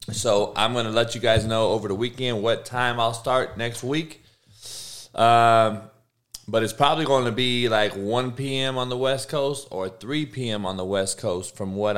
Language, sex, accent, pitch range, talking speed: English, male, American, 110-140 Hz, 190 wpm